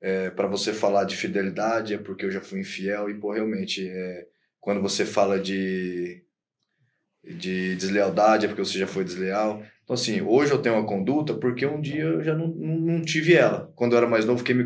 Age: 20-39